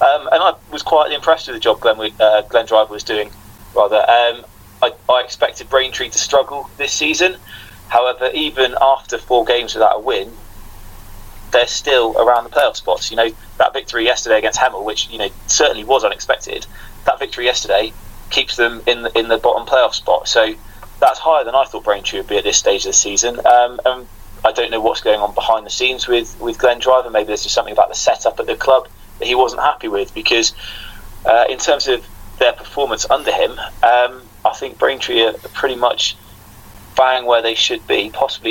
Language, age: English, 20-39